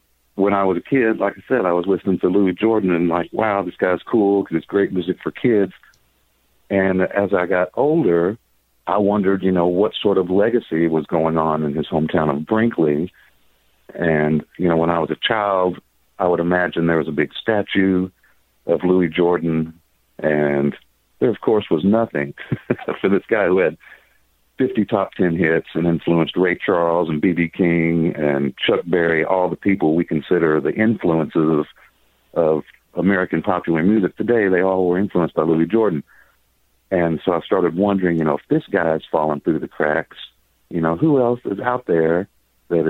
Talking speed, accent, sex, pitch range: 185 wpm, American, male, 75-95 Hz